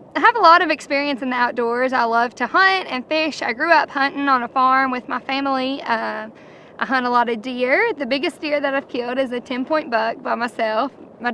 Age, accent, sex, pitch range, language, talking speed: 10-29, American, female, 230-275 Hz, English, 240 wpm